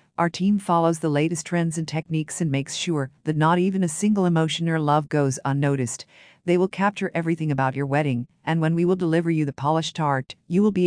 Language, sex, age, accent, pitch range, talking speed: English, female, 50-69, American, 150-180 Hz, 220 wpm